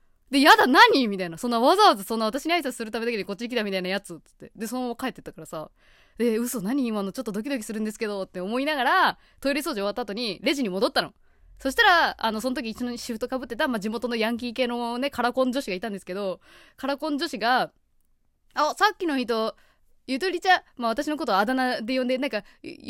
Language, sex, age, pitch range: Japanese, female, 20-39, 200-310 Hz